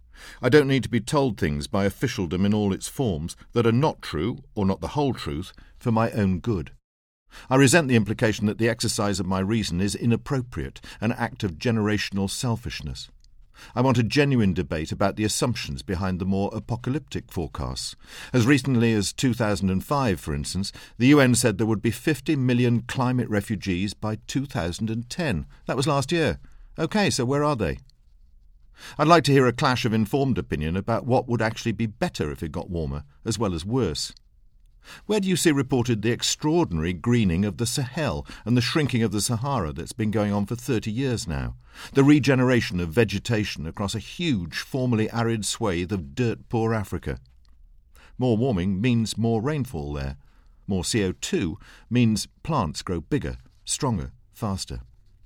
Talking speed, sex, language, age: 170 wpm, male, English, 50-69